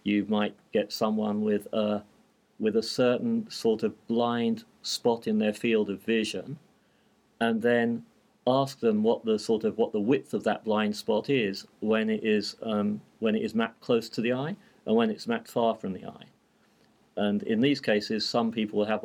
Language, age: English, 40-59